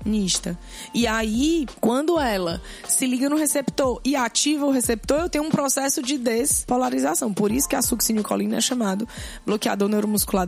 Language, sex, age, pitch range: Portuguese, female, 20-39, 225-280 Hz